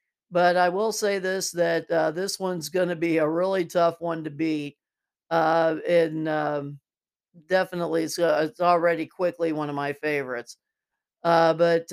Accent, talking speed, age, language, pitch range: American, 160 wpm, 50-69, English, 155-180 Hz